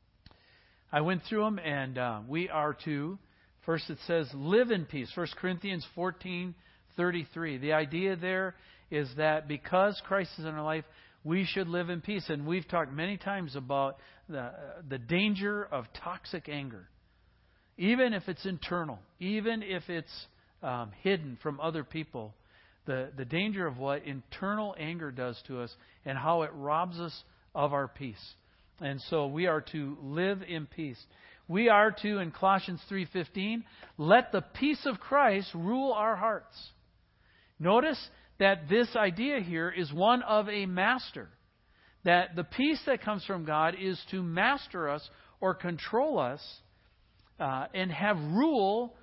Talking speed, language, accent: 155 wpm, English, American